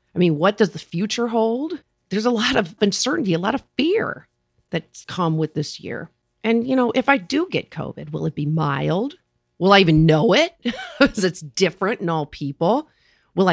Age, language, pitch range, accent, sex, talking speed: 40-59, English, 155-210 Hz, American, female, 200 wpm